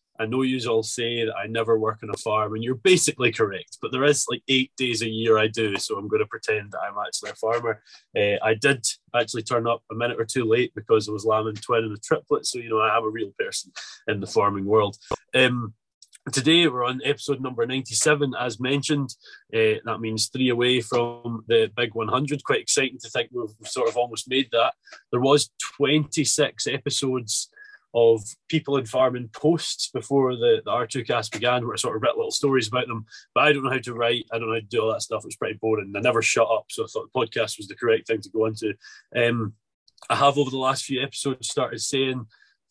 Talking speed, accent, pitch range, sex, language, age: 230 wpm, British, 115-140 Hz, male, English, 20-39